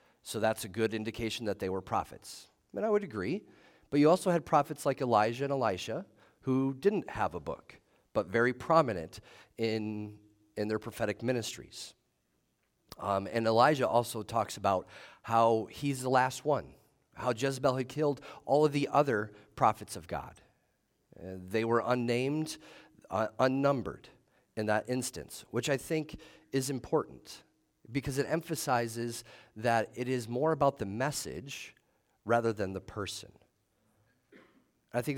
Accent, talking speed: American, 150 wpm